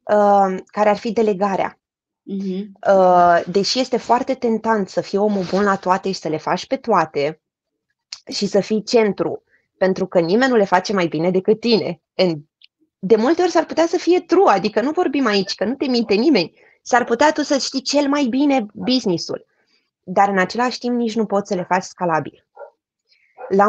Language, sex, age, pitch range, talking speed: Romanian, female, 20-39, 185-240 Hz, 185 wpm